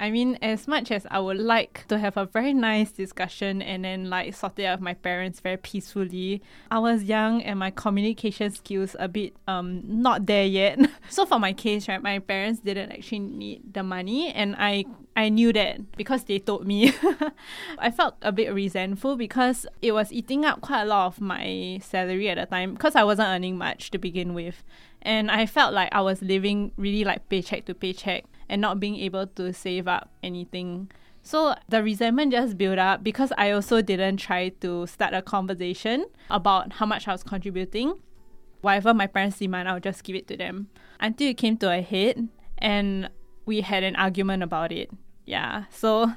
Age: 20-39